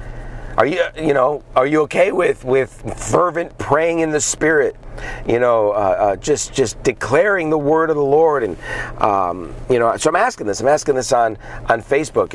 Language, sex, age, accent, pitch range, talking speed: English, male, 40-59, American, 110-130 Hz, 195 wpm